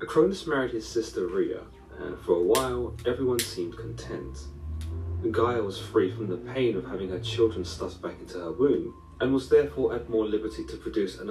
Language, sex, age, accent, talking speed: English, male, 30-49, British, 190 wpm